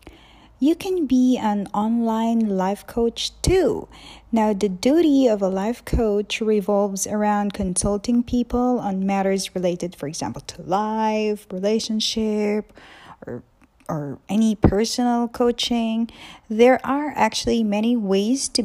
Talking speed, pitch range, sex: 120 wpm, 205-255 Hz, female